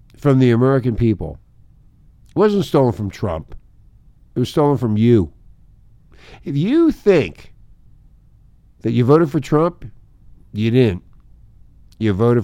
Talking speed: 125 wpm